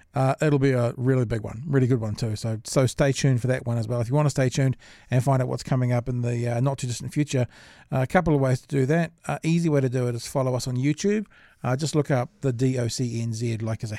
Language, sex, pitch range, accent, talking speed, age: English, male, 120-140 Hz, Australian, 290 wpm, 40-59